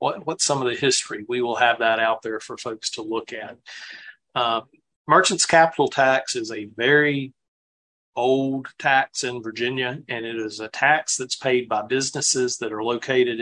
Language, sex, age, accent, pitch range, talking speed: English, male, 40-59, American, 115-135 Hz, 175 wpm